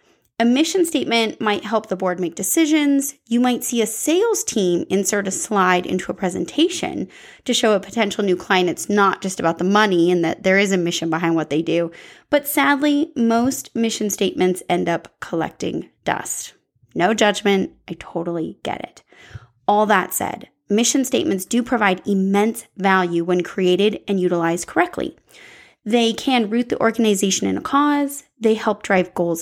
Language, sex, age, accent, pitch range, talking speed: English, female, 20-39, American, 185-245 Hz, 170 wpm